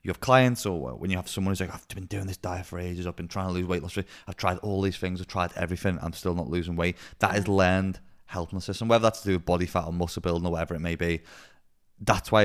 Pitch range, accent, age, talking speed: 90-100 Hz, British, 20-39, 290 wpm